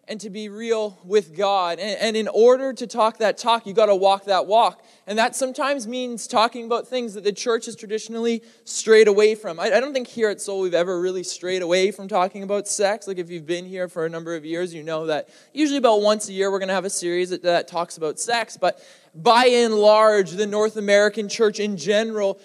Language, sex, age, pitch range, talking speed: English, male, 20-39, 180-235 Hz, 240 wpm